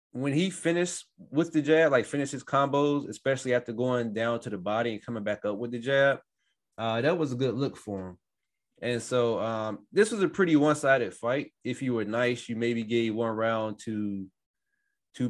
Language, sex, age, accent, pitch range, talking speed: English, male, 20-39, American, 115-140 Hz, 205 wpm